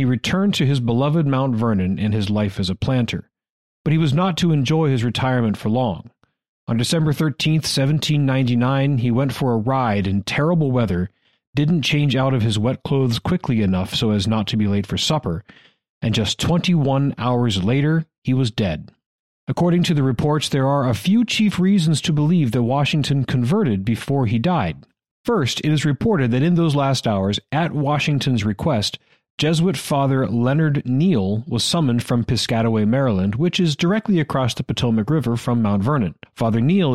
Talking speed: 180 wpm